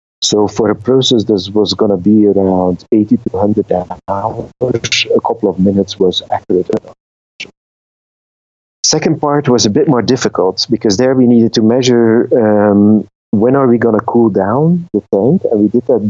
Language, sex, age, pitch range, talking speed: English, male, 50-69, 100-120 Hz, 180 wpm